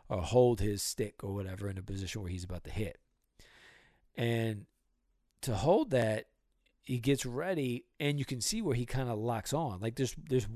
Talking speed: 190 wpm